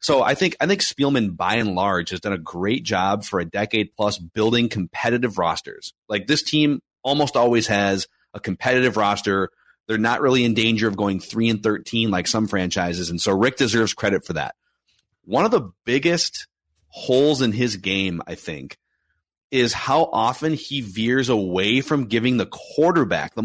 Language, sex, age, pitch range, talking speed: English, male, 30-49, 105-145 Hz, 180 wpm